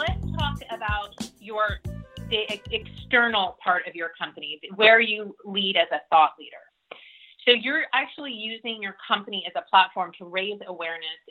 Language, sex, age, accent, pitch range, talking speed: English, female, 30-49, American, 195-240 Hz, 155 wpm